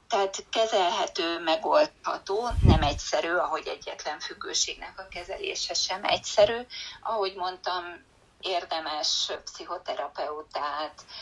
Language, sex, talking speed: Hungarian, female, 85 wpm